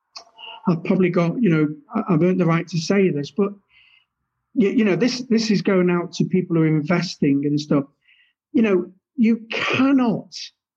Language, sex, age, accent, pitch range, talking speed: English, male, 50-69, British, 155-185 Hz, 180 wpm